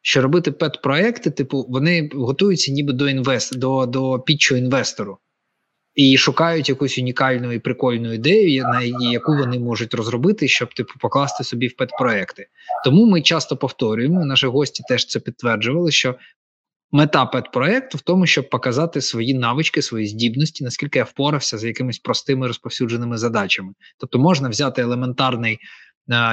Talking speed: 145 wpm